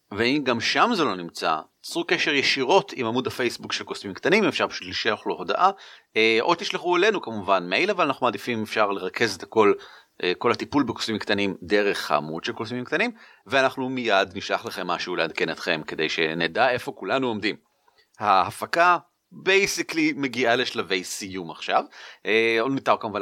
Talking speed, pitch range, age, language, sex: 165 wpm, 110-180 Hz, 30-49, Hebrew, male